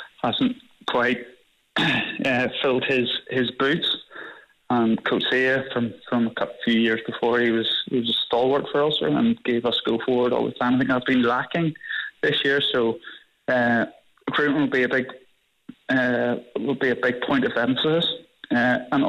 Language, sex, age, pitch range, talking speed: English, male, 20-39, 115-135 Hz, 175 wpm